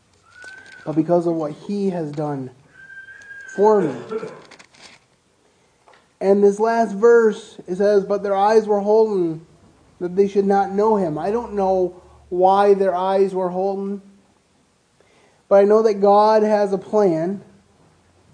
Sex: male